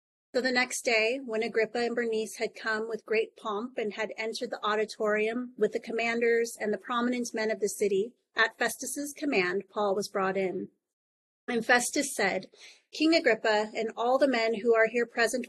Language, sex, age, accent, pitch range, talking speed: English, female, 30-49, American, 210-245 Hz, 185 wpm